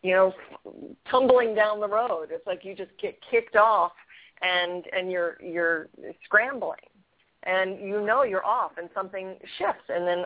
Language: English